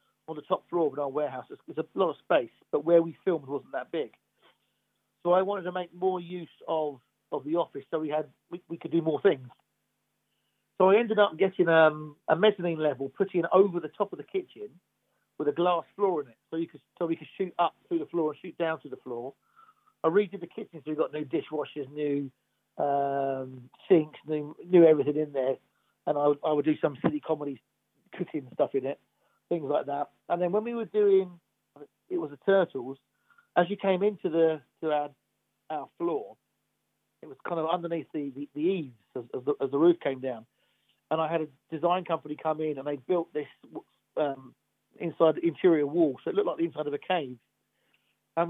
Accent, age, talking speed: British, 40-59, 215 wpm